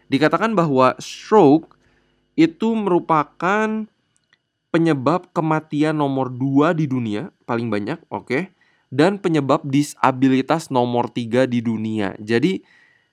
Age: 20-39